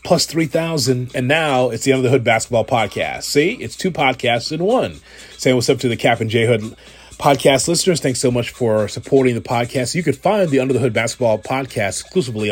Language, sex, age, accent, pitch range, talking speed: English, male, 30-49, American, 105-130 Hz, 210 wpm